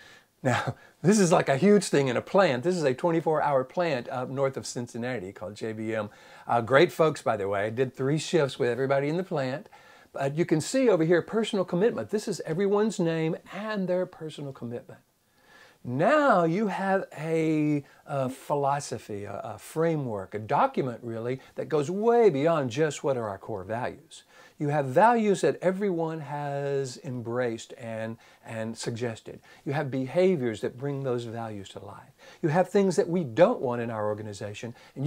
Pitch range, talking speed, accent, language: 120-175 Hz, 180 wpm, American, English